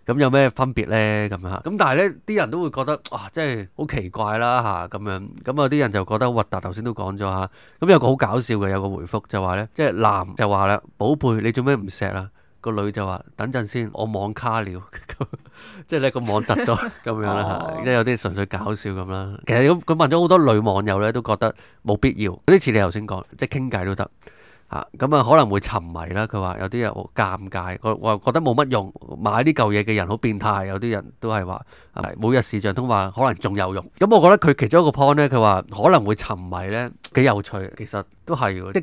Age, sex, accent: 20-39, male, native